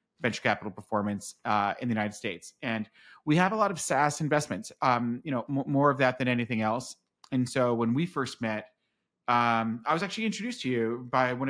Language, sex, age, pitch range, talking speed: English, male, 30-49, 115-140 Hz, 215 wpm